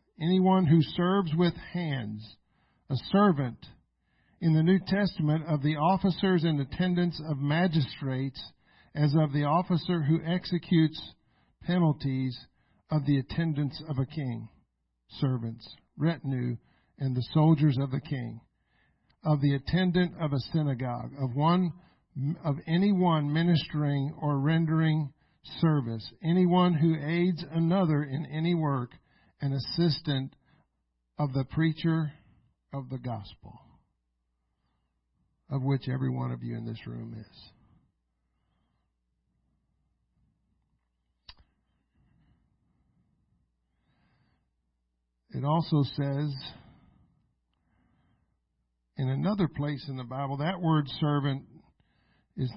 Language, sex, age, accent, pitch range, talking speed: English, male, 50-69, American, 120-160 Hz, 105 wpm